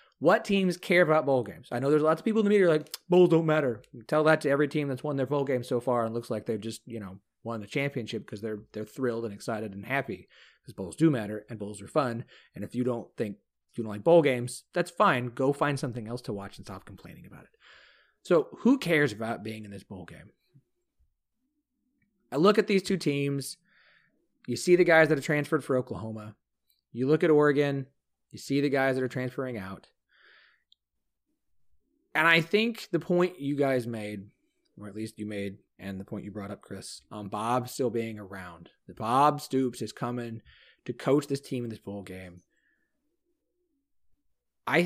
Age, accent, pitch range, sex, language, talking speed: 30-49, American, 105-155 Hz, male, English, 215 wpm